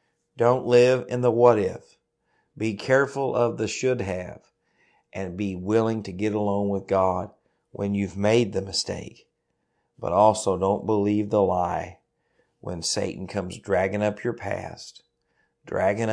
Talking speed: 145 wpm